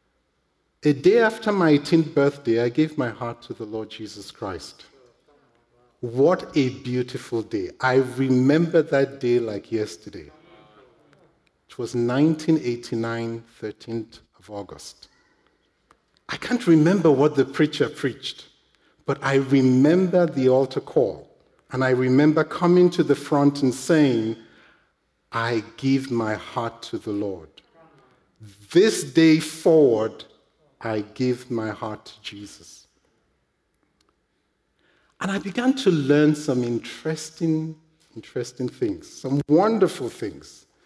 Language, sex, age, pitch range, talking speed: English, male, 50-69, 115-160 Hz, 120 wpm